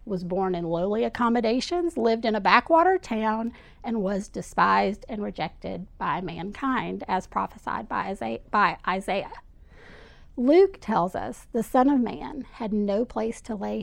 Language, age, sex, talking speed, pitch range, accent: English, 30-49, female, 145 wpm, 215-270 Hz, American